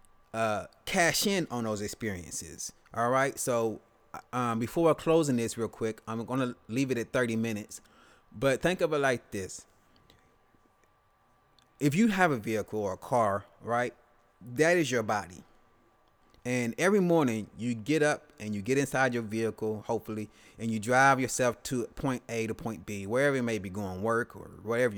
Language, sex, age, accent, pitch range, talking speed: English, male, 20-39, American, 110-145 Hz, 175 wpm